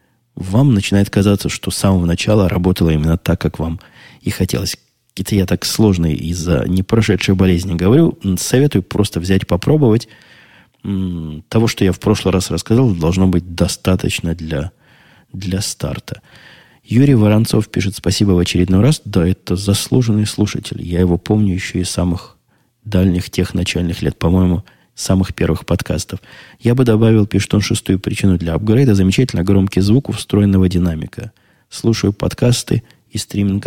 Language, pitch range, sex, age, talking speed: Russian, 90-110 Hz, male, 20-39, 145 wpm